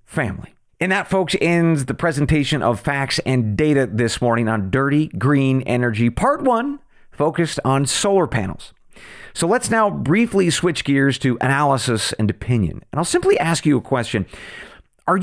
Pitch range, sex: 125-190 Hz, male